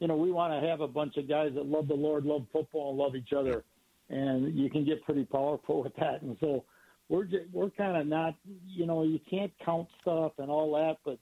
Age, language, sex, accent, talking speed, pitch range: 60-79, English, male, American, 245 wpm, 130-160 Hz